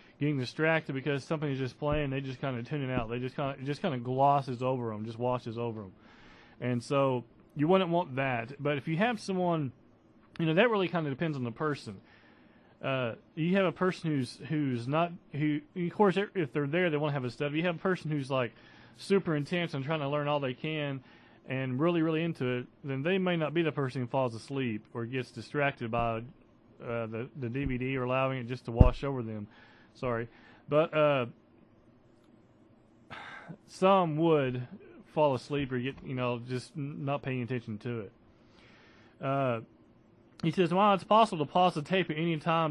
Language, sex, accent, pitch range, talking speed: English, male, American, 125-160 Hz, 210 wpm